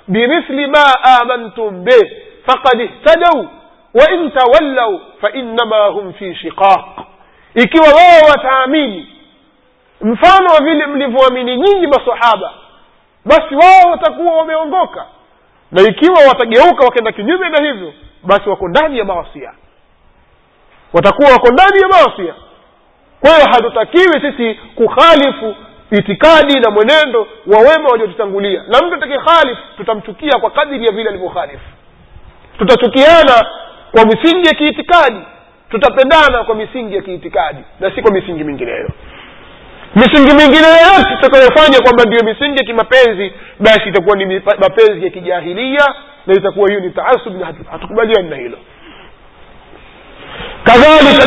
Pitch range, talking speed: 215-305 Hz, 120 wpm